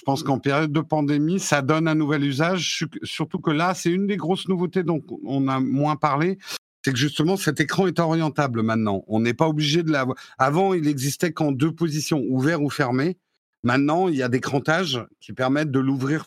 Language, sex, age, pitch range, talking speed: French, male, 50-69, 125-165 Hz, 210 wpm